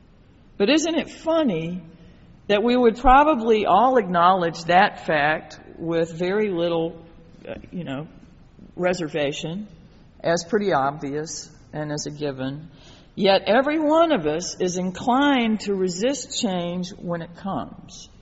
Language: English